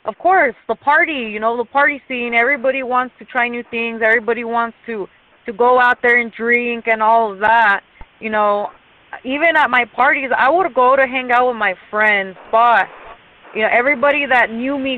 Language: English